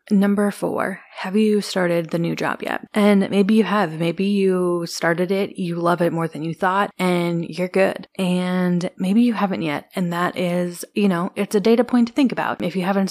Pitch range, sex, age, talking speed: 170-200 Hz, female, 20-39, 215 wpm